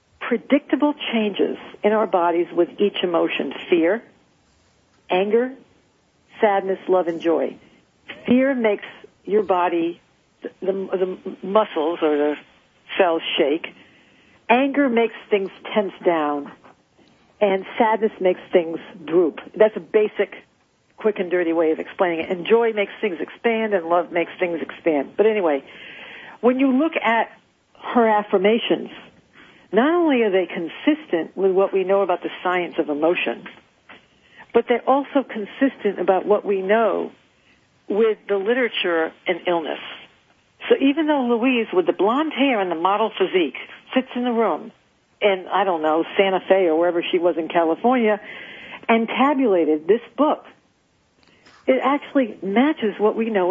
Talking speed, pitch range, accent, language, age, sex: 145 wpm, 180-235 Hz, American, English, 50-69, female